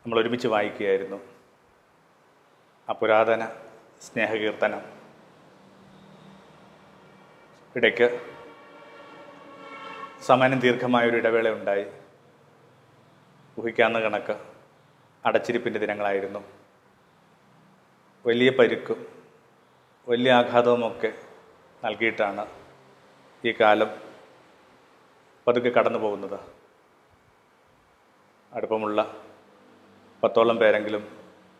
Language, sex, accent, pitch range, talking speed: Malayalam, male, native, 105-125 Hz, 55 wpm